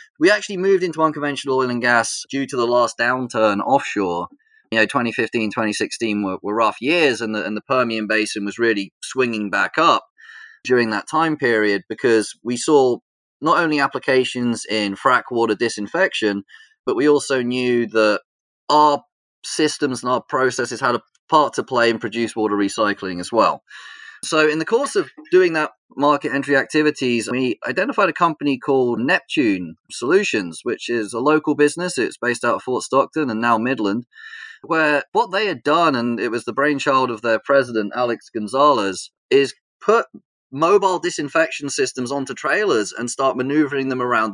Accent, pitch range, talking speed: British, 115-155 Hz, 170 wpm